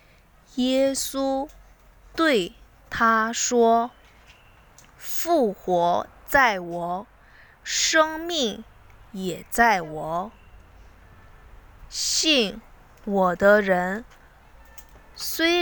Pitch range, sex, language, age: 185-255 Hz, female, Korean, 20-39